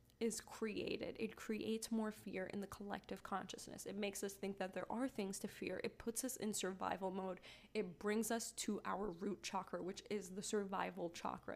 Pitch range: 200-240 Hz